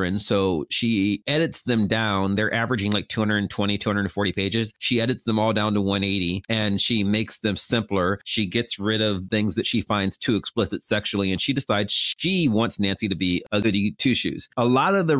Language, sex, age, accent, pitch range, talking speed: English, male, 30-49, American, 100-125 Hz, 195 wpm